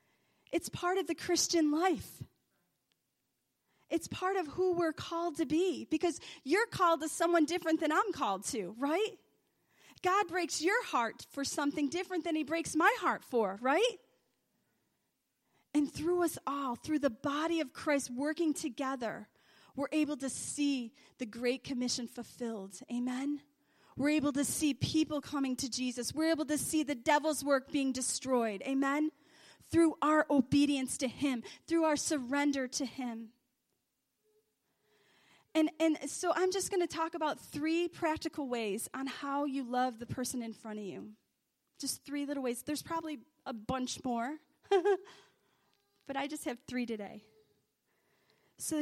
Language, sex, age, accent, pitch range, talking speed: English, female, 30-49, American, 255-325 Hz, 155 wpm